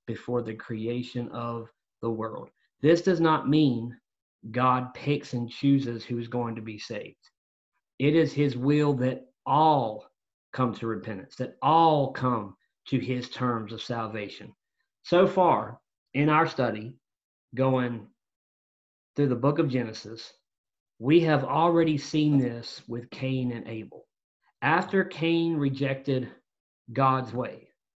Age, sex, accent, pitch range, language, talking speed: 40-59, male, American, 120-150 Hz, English, 135 wpm